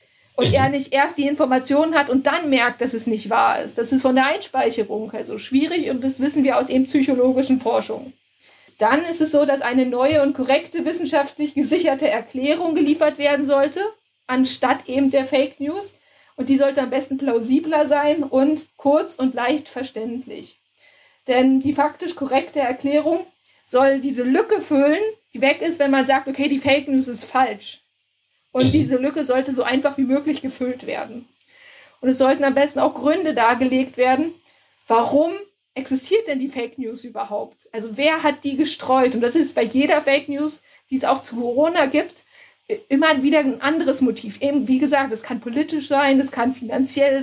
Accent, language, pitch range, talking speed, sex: German, German, 255-295 Hz, 180 wpm, female